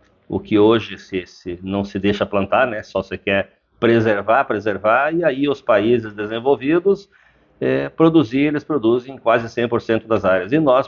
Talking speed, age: 165 wpm, 50-69